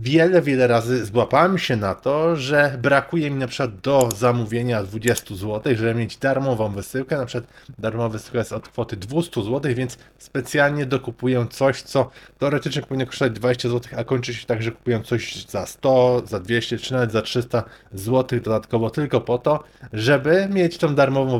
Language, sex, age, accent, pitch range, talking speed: Polish, male, 20-39, native, 115-145 Hz, 175 wpm